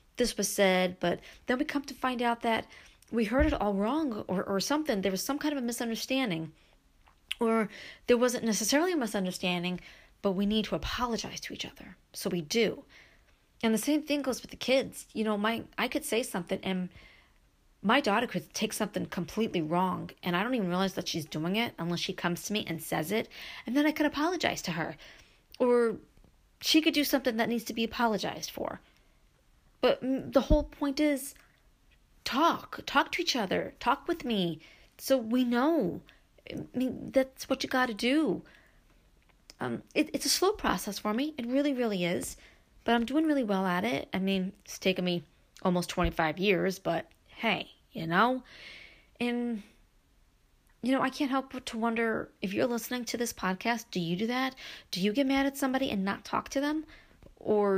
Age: 40-59